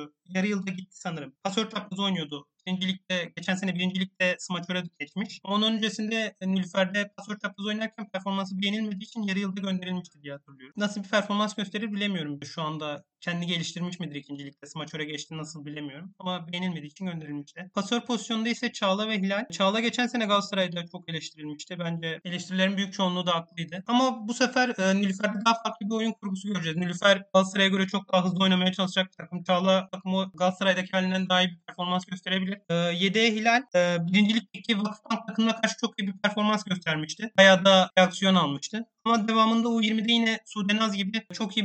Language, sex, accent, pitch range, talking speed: Turkish, male, native, 175-205 Hz, 175 wpm